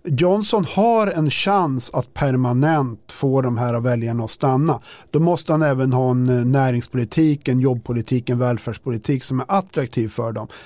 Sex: male